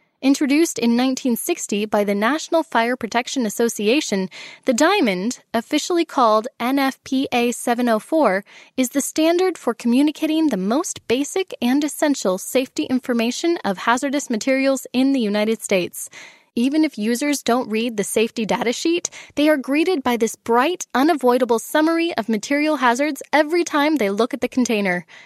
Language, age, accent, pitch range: English, 10-29, American, 230-300 Hz